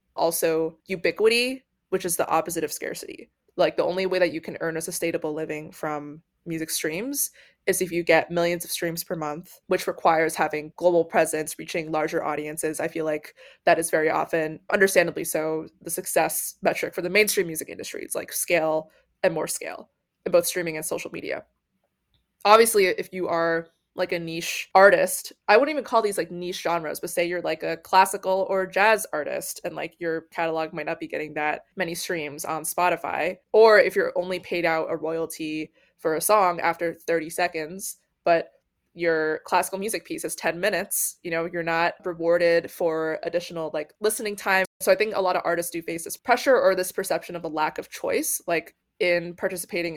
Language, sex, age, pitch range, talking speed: English, female, 20-39, 160-190 Hz, 190 wpm